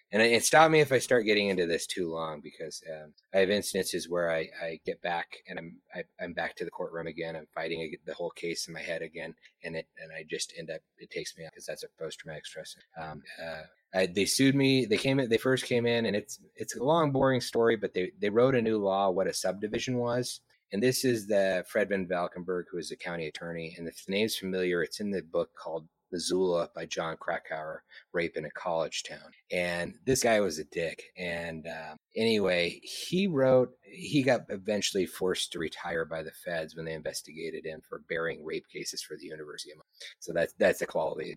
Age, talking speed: 30-49, 225 wpm